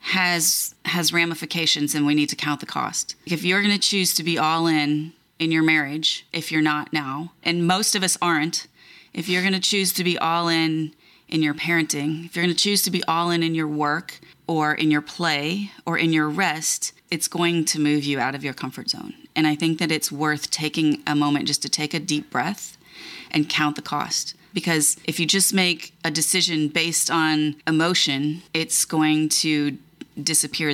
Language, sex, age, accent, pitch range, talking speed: English, female, 30-49, American, 150-170 Hz, 205 wpm